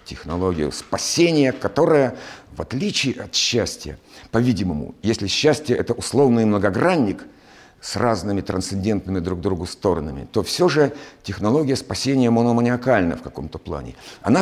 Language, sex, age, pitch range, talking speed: Russian, male, 50-69, 100-135 Hz, 125 wpm